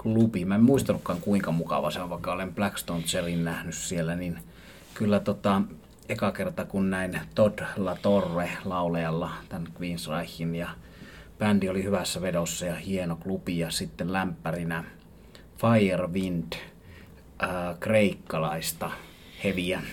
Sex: male